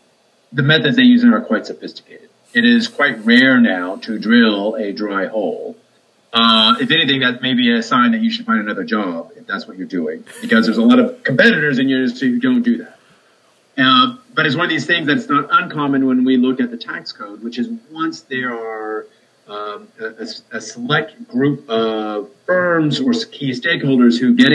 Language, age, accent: English, 40-59, American